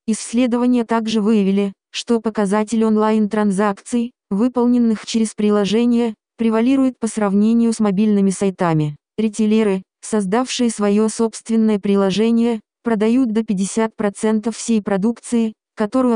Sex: female